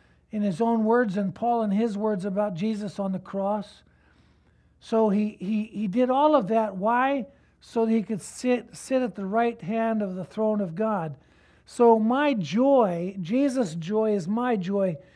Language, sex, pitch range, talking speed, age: English, male, 195-245 Hz, 180 wpm, 60-79